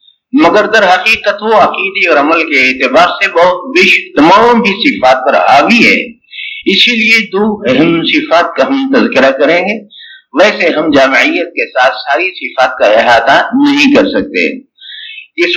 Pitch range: 225-305 Hz